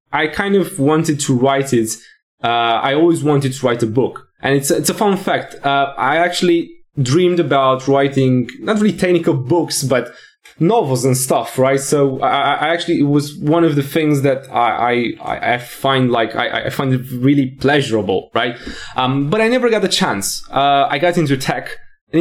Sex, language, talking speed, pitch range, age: male, English, 195 wpm, 120-155 Hz, 20-39